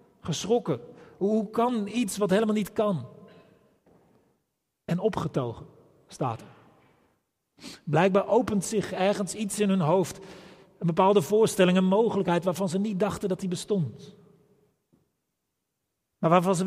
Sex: male